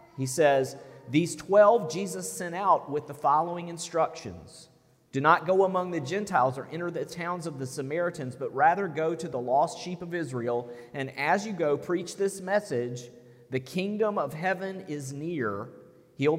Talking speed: 170 wpm